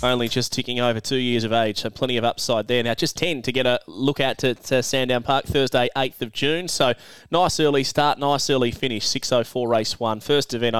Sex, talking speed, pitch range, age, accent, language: male, 230 wpm, 115-135 Hz, 20-39, Australian, English